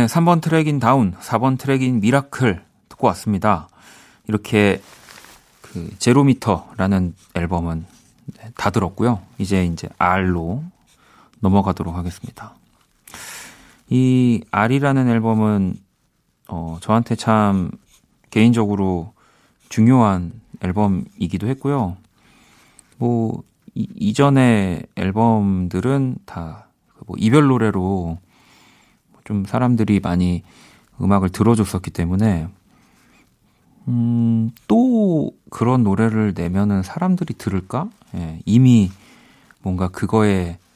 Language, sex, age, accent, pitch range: Korean, male, 30-49, native, 95-120 Hz